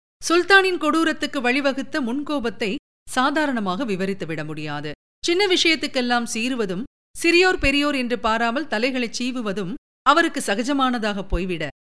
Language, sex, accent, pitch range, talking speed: Tamil, female, native, 205-290 Hz, 95 wpm